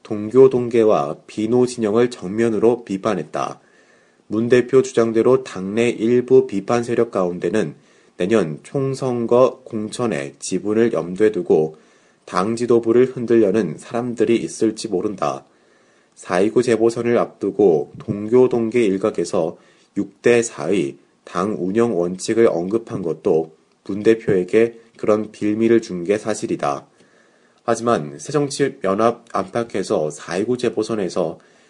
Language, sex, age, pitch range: Korean, male, 30-49, 105-120 Hz